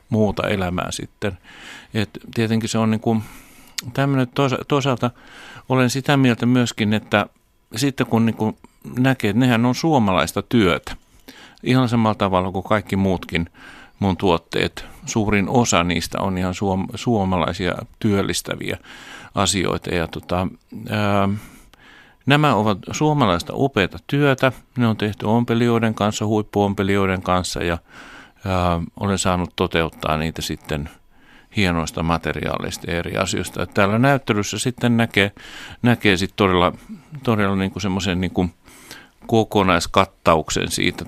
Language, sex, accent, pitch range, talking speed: Finnish, male, native, 90-115 Hz, 120 wpm